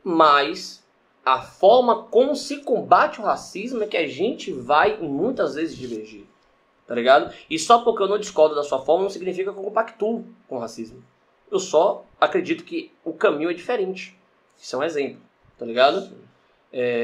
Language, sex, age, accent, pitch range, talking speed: Portuguese, male, 20-39, Brazilian, 140-200 Hz, 175 wpm